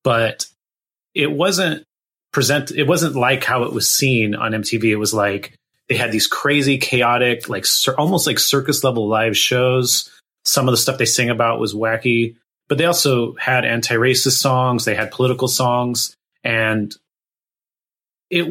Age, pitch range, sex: 30-49, 115-140 Hz, male